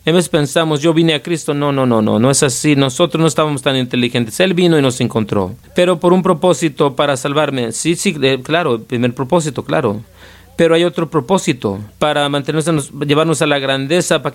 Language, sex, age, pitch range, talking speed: Spanish, male, 40-59, 140-175 Hz, 200 wpm